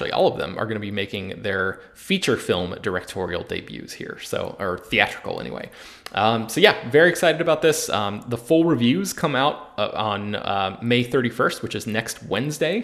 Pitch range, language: 105-125 Hz, English